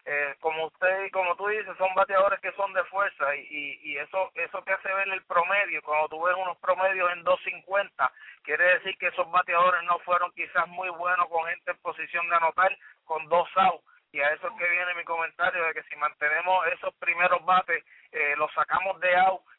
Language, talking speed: English, 210 wpm